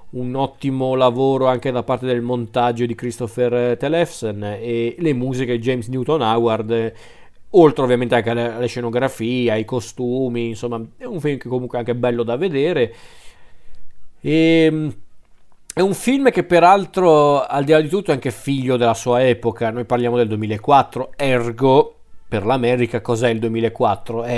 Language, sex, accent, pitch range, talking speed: Italian, male, native, 115-135 Hz, 160 wpm